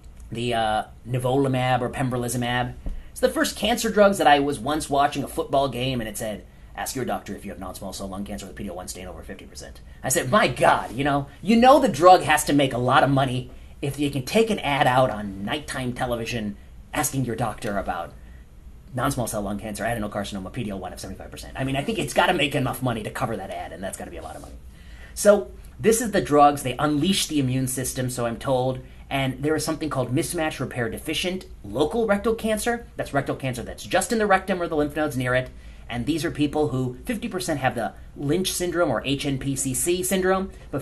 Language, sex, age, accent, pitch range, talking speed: English, male, 30-49, American, 110-155 Hz, 225 wpm